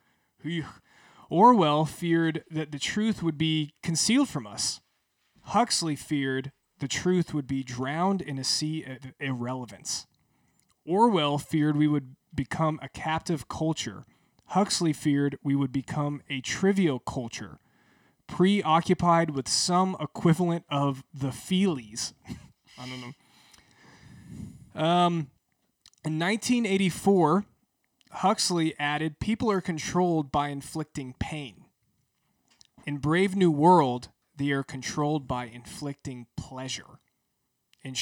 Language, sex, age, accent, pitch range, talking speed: English, male, 20-39, American, 130-165 Hz, 110 wpm